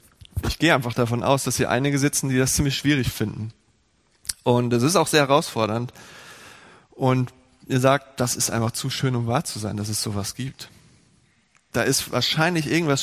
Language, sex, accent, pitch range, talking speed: German, male, German, 120-155 Hz, 185 wpm